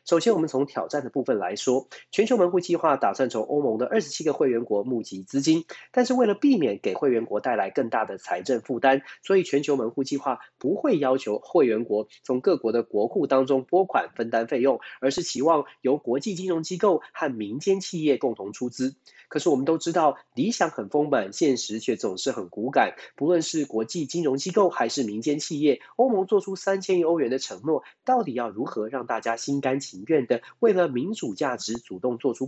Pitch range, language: 130-190 Hz, Chinese